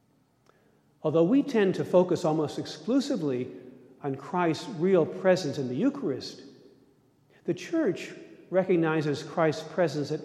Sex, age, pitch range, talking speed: male, 50-69, 140-200 Hz, 115 wpm